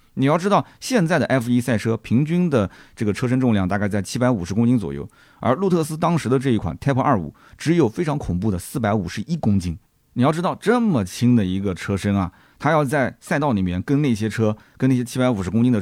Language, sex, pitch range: Chinese, male, 95-130 Hz